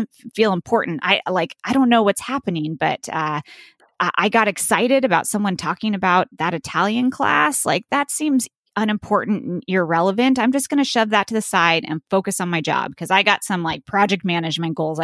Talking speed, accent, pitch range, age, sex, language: 190 wpm, American, 175-235 Hz, 20-39, female, English